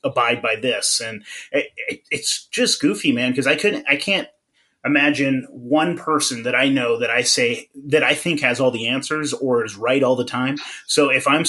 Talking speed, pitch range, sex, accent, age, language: 200 wpm, 130-160 Hz, male, American, 30-49, English